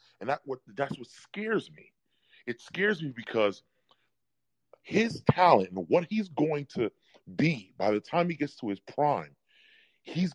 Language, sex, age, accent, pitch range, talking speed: English, female, 30-49, American, 115-180 Hz, 160 wpm